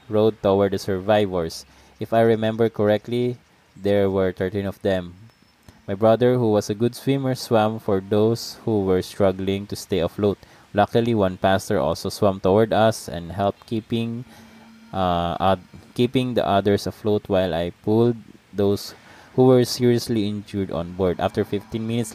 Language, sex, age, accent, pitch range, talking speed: English, male, 20-39, Filipino, 90-110 Hz, 155 wpm